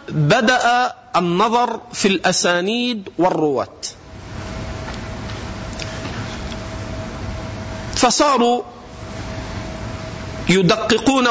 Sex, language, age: male, Arabic, 50-69